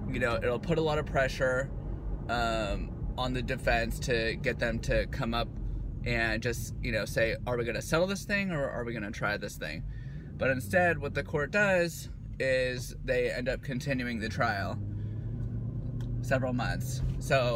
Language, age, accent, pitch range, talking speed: English, 20-39, American, 115-135 Hz, 185 wpm